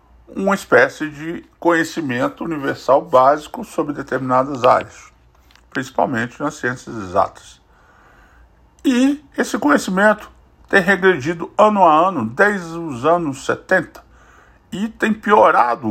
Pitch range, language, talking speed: 120-195 Hz, Portuguese, 105 wpm